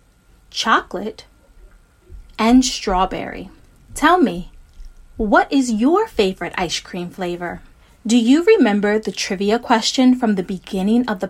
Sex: female